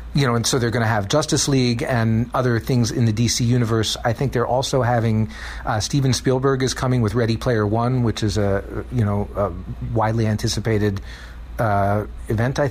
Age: 40-59